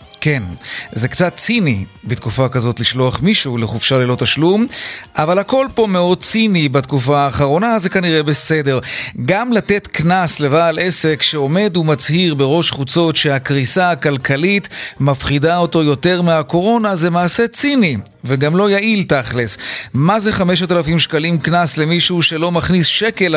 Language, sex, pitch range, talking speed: Hebrew, male, 140-185 Hz, 135 wpm